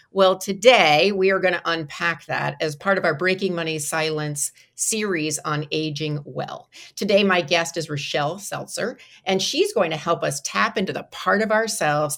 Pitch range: 155-200 Hz